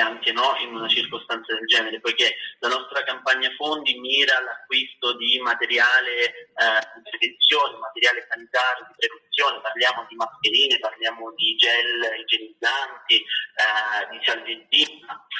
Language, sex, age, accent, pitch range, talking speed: Italian, male, 30-49, native, 115-170 Hz, 130 wpm